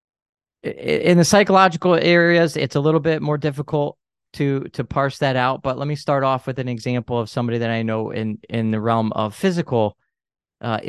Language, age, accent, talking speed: English, 20-39, American, 195 wpm